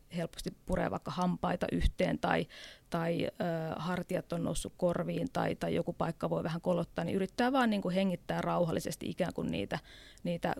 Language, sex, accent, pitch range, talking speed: Finnish, female, native, 180-230 Hz, 170 wpm